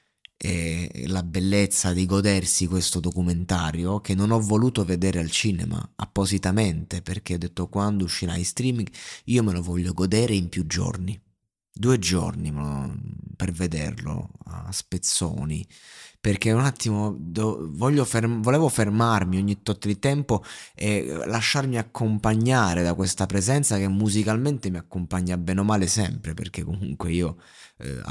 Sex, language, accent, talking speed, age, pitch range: male, Italian, native, 135 wpm, 30-49, 90-110 Hz